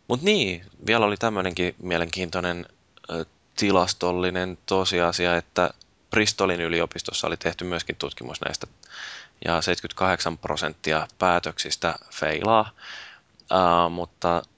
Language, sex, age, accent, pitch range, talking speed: Finnish, male, 20-39, native, 85-100 Hz, 95 wpm